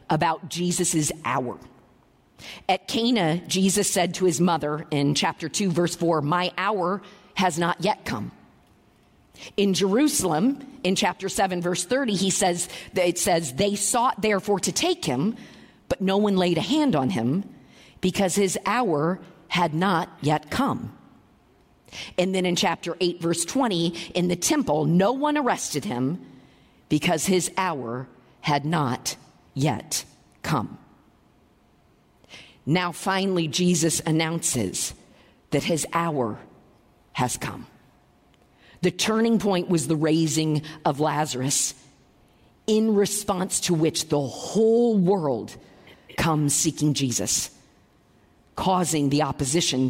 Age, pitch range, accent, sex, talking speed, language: 50-69, 155-195 Hz, American, female, 125 wpm, English